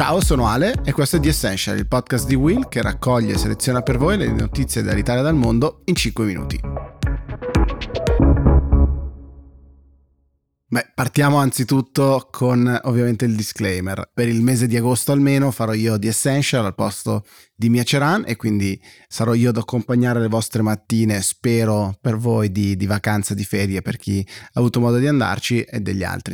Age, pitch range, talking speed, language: 30-49, 105-135 Hz, 170 wpm, Italian